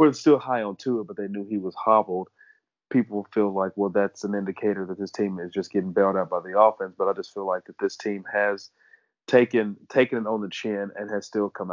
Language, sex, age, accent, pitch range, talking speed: English, male, 30-49, American, 95-110 Hz, 250 wpm